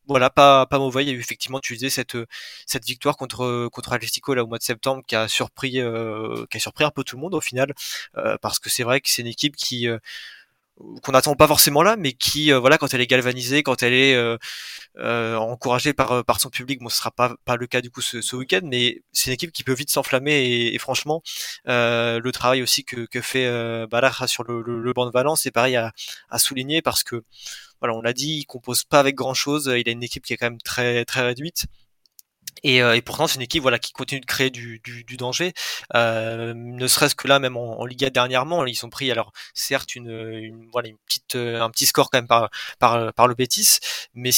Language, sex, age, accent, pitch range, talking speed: French, male, 20-39, French, 115-135 Hz, 250 wpm